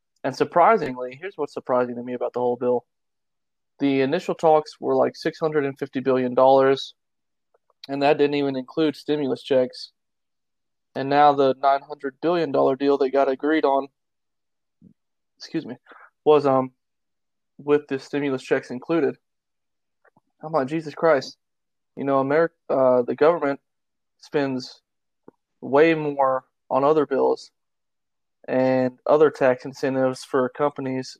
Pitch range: 130-145 Hz